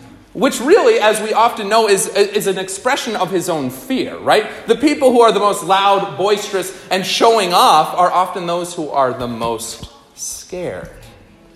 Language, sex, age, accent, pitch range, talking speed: English, male, 30-49, American, 155-235 Hz, 175 wpm